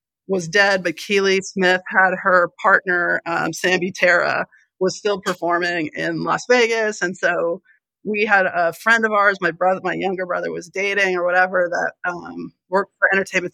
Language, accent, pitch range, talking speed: English, American, 185-220 Hz, 175 wpm